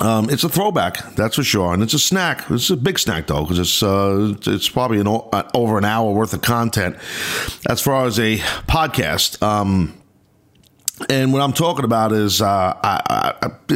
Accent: American